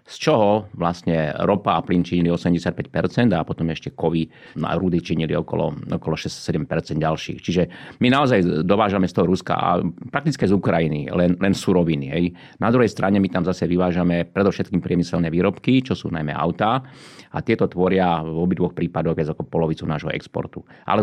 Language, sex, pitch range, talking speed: Slovak, male, 85-95 Hz, 170 wpm